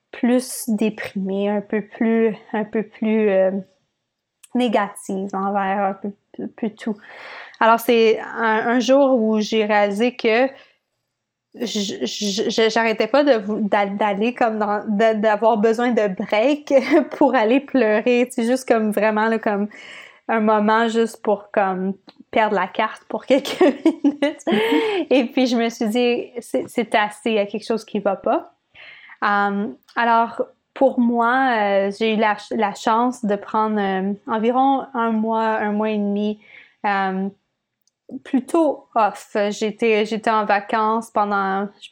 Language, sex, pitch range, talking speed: English, female, 205-240 Hz, 130 wpm